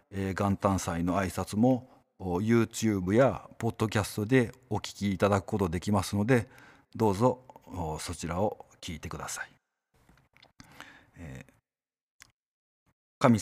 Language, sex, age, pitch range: Japanese, male, 50-69, 100-130 Hz